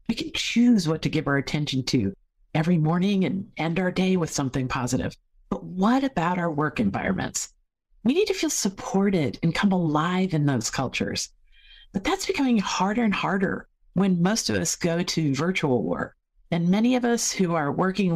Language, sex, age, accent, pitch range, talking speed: English, female, 50-69, American, 150-200 Hz, 185 wpm